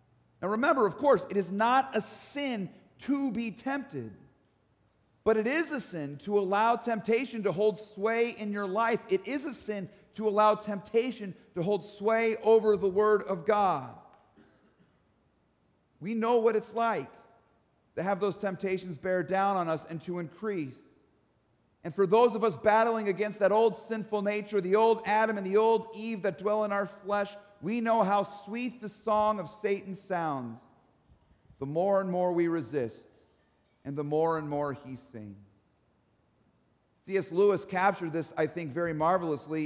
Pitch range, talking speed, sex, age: 160-215 Hz, 165 wpm, male, 40-59